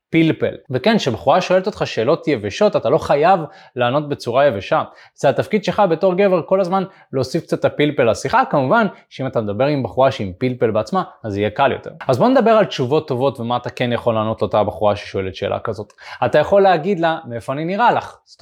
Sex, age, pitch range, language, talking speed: male, 20-39, 125-175 Hz, Hebrew, 205 wpm